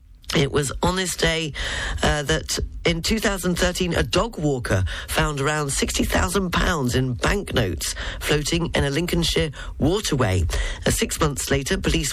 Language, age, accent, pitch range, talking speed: English, 40-59, British, 110-160 Hz, 135 wpm